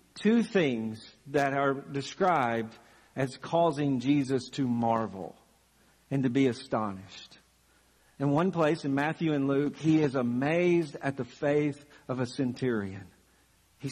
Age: 50-69